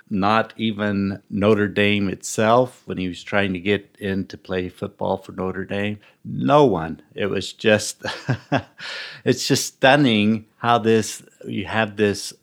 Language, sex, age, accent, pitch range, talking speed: English, male, 60-79, American, 95-105 Hz, 150 wpm